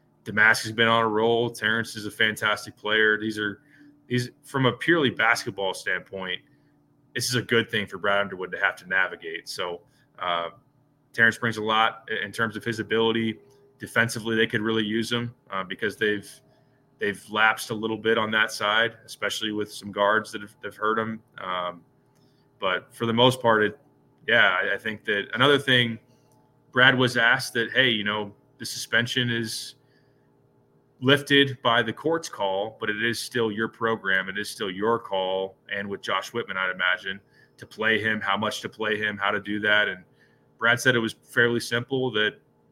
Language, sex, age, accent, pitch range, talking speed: English, male, 20-39, American, 105-125 Hz, 190 wpm